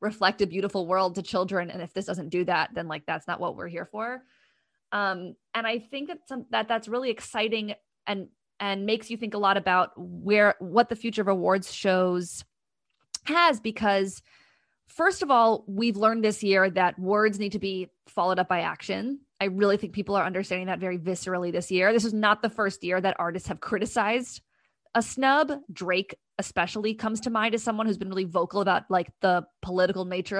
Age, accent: 20-39, American